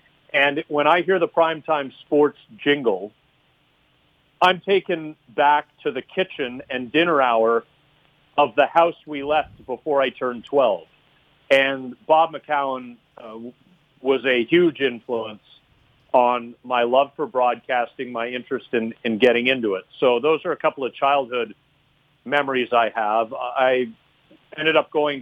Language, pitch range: English, 120-145 Hz